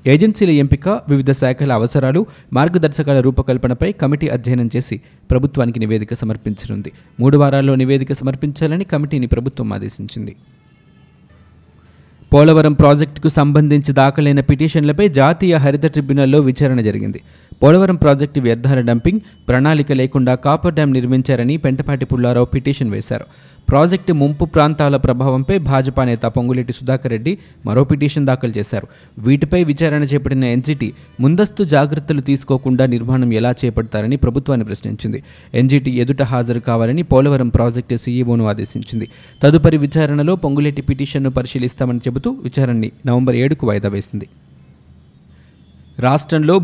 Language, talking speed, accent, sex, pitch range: Telugu, 115 wpm, native, male, 120-150 Hz